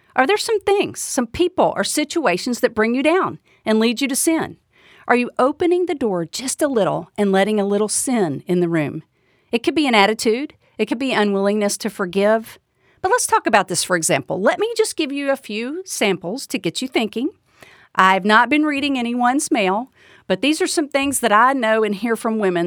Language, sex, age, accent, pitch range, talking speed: English, female, 50-69, American, 200-295 Hz, 215 wpm